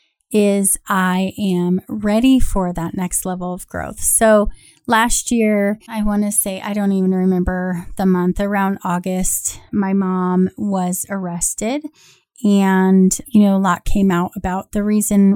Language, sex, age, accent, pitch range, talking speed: English, female, 30-49, American, 185-210 Hz, 150 wpm